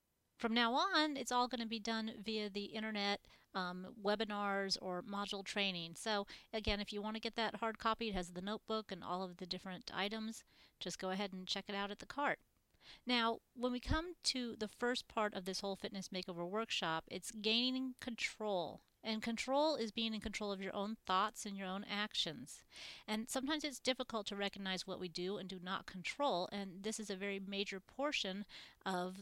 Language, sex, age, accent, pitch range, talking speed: English, female, 40-59, American, 195-235 Hz, 205 wpm